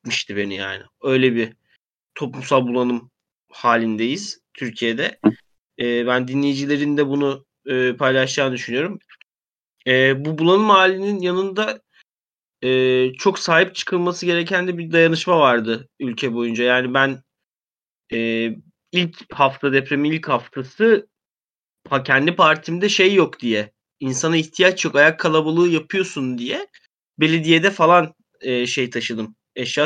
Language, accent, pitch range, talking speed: Turkish, native, 125-165 Hz, 115 wpm